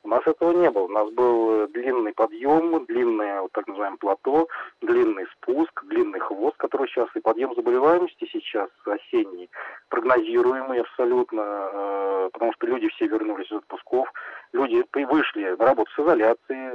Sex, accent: male, native